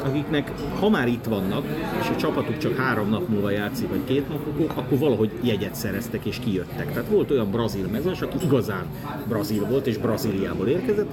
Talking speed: 190 wpm